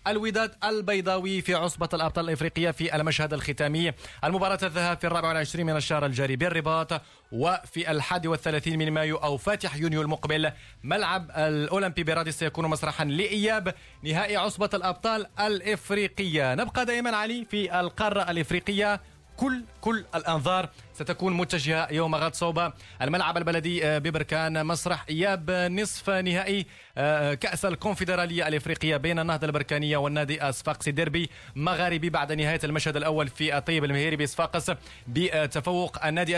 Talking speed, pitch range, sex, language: 130 wpm, 155-185 Hz, male, Arabic